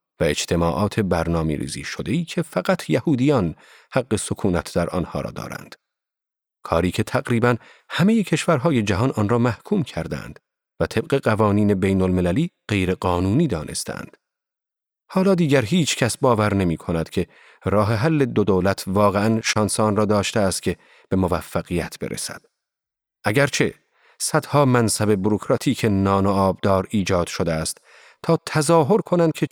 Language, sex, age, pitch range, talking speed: Persian, male, 40-59, 100-155 Hz, 135 wpm